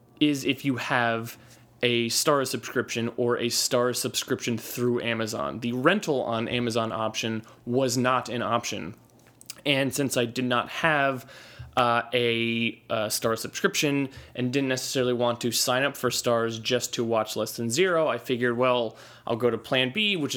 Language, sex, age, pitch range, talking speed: English, male, 20-39, 115-130 Hz, 170 wpm